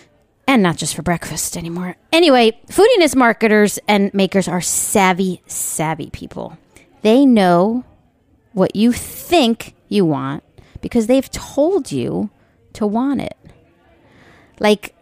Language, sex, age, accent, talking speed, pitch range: English, female, 40-59, American, 120 wpm, 175-235 Hz